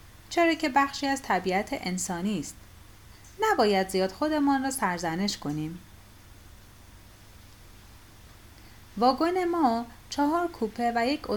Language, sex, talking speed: Persian, female, 100 wpm